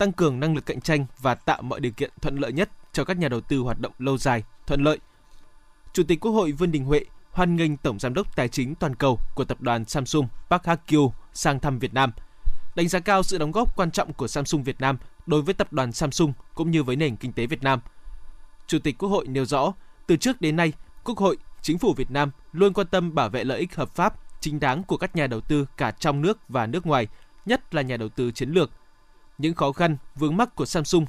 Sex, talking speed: male, 245 wpm